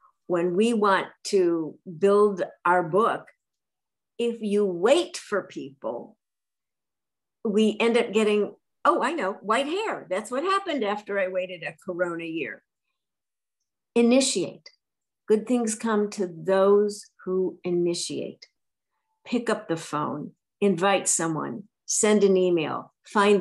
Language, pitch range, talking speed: English, 180-225 Hz, 125 wpm